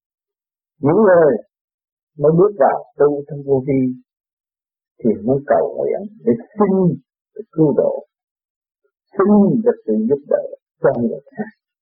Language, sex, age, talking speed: Vietnamese, male, 50-69, 115 wpm